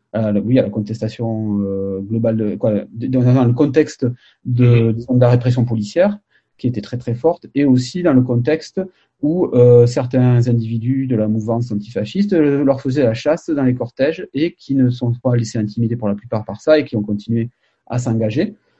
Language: French